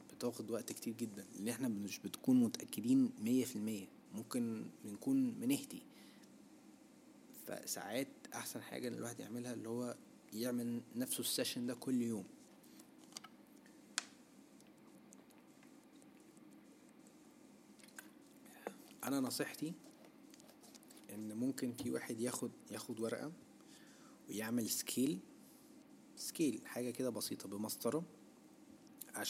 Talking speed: 95 wpm